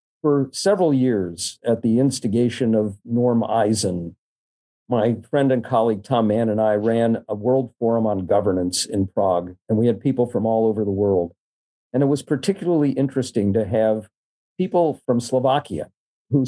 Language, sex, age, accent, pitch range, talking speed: English, male, 50-69, American, 115-135 Hz, 165 wpm